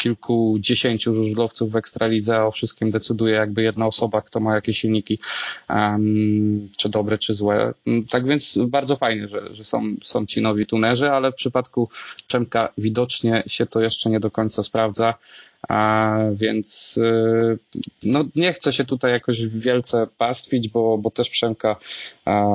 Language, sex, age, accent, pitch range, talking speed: Polish, male, 20-39, native, 110-120 Hz, 155 wpm